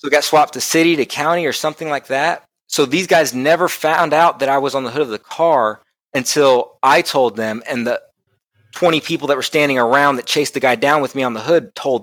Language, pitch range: English, 125-155 Hz